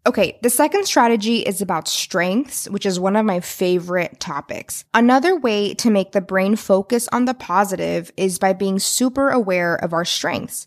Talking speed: 180 wpm